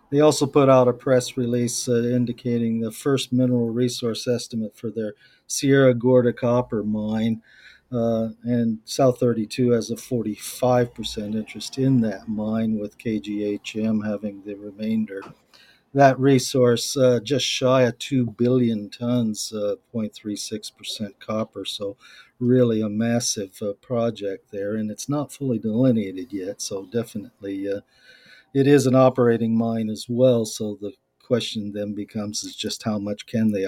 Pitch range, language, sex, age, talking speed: 110-125 Hz, English, male, 50-69, 145 wpm